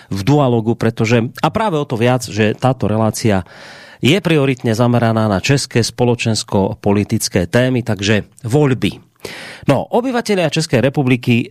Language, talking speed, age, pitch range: Slovak, 125 wpm, 30-49, 105-130 Hz